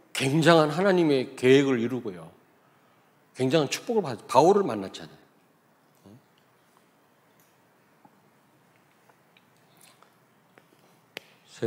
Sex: male